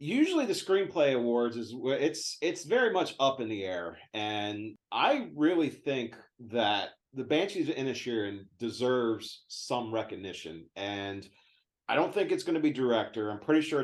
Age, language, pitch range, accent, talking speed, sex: 40-59, English, 105-140 Hz, American, 160 wpm, male